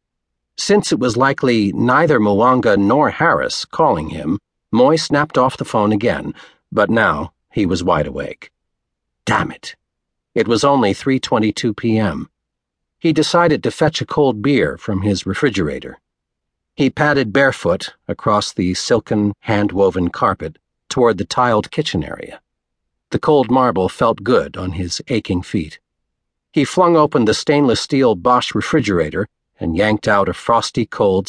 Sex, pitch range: male, 95-145 Hz